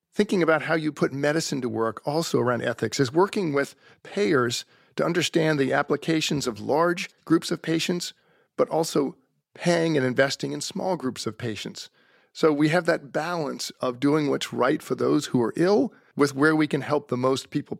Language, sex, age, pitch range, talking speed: English, male, 40-59, 130-165 Hz, 190 wpm